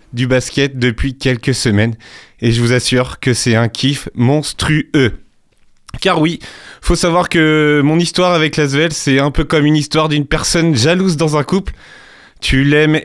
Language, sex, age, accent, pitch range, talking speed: French, male, 30-49, French, 130-165 Hz, 175 wpm